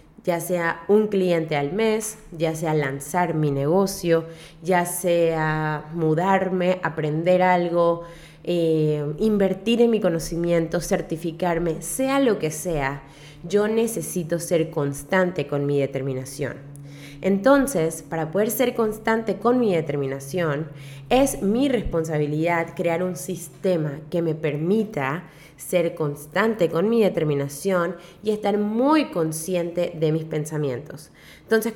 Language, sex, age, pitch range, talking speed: Spanish, female, 20-39, 155-205 Hz, 120 wpm